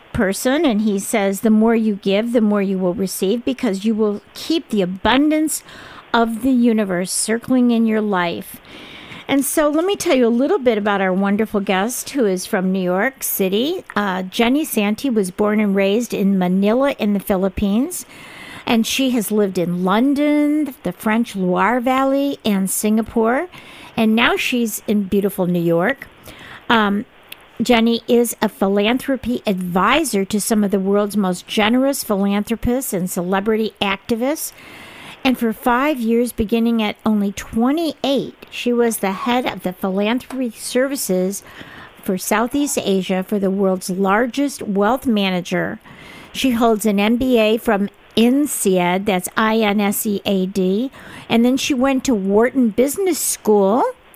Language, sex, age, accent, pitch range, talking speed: English, female, 50-69, American, 200-250 Hz, 150 wpm